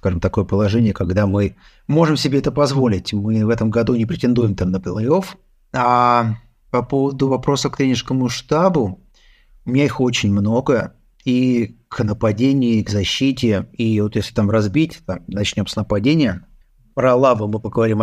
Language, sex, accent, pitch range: Russian, male, native, 110-140 Hz